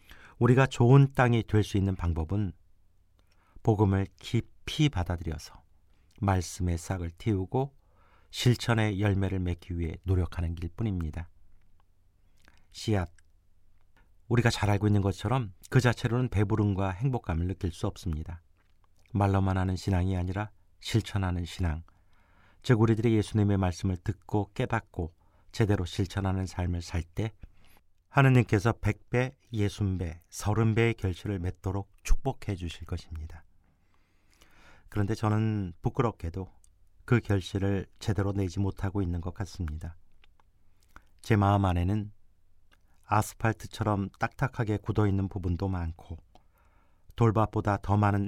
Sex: male